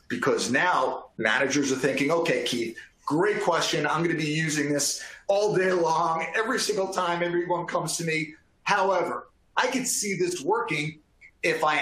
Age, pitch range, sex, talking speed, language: 40-59, 140-220 Hz, male, 160 wpm, English